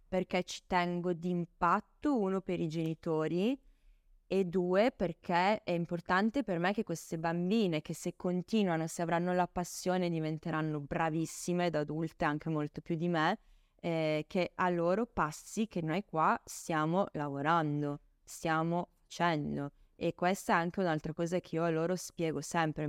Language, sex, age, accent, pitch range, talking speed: Italian, female, 20-39, native, 165-210 Hz, 155 wpm